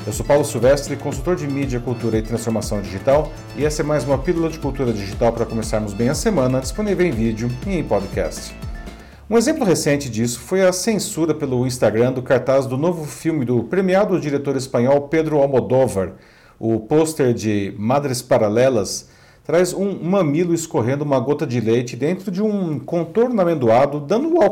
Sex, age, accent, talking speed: male, 40-59, Brazilian, 175 wpm